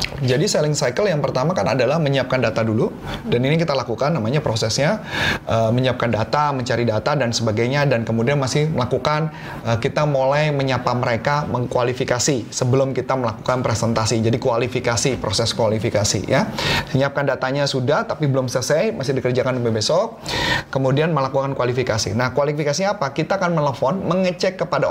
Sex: male